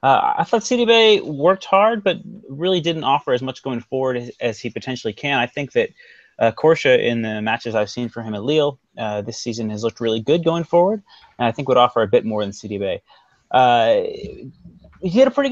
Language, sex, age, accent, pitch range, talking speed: English, male, 30-49, American, 120-185 Hz, 220 wpm